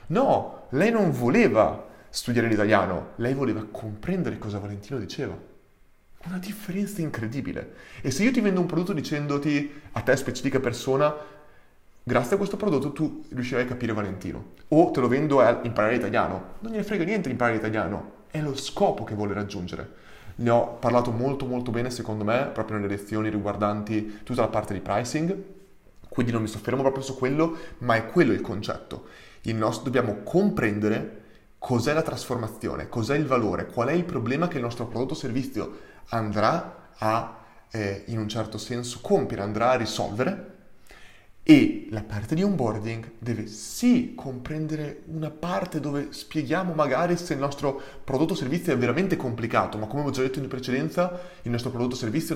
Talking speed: 170 wpm